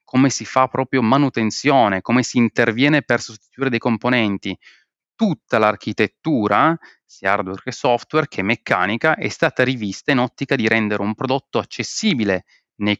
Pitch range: 110-145 Hz